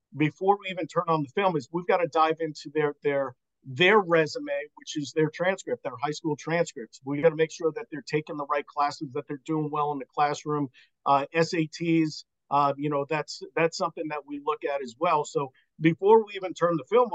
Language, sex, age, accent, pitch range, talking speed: English, male, 50-69, American, 150-180 Hz, 225 wpm